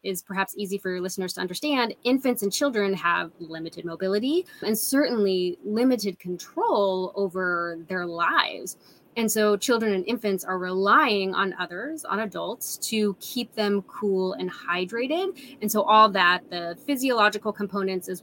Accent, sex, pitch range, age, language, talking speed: American, female, 185-225 Hz, 20-39, English, 150 wpm